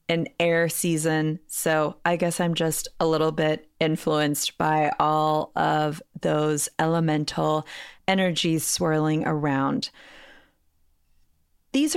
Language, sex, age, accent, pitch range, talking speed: English, female, 30-49, American, 155-190 Hz, 105 wpm